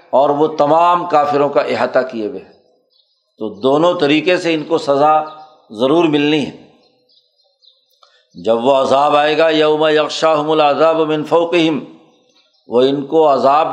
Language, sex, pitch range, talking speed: Urdu, male, 145-170 Hz, 140 wpm